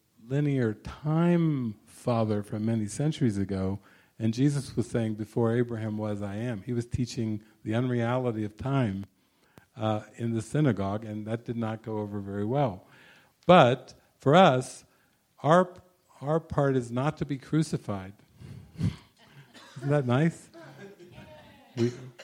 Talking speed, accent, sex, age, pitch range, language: 135 wpm, American, male, 50-69, 115-150 Hz, English